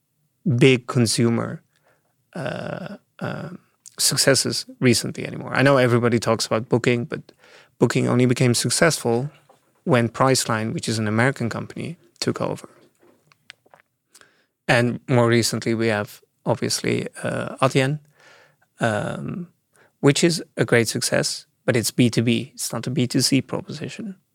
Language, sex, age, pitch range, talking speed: English, male, 30-49, 120-145 Hz, 120 wpm